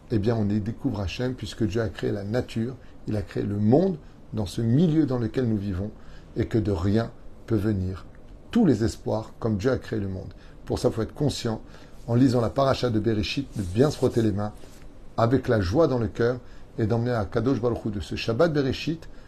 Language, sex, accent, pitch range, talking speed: French, male, French, 105-125 Hz, 225 wpm